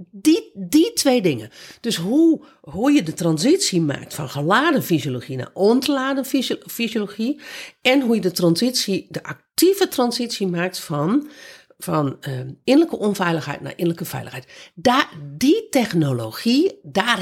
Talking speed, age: 130 wpm, 50-69